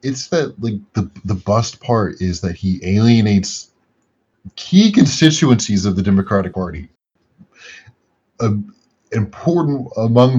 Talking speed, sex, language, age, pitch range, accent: 110 wpm, male, English, 30-49, 90-120 Hz, American